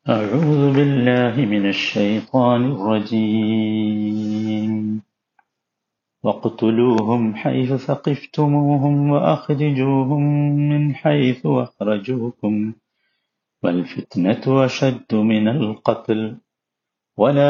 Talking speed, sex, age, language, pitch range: 60 wpm, male, 50-69, Malayalam, 110-145 Hz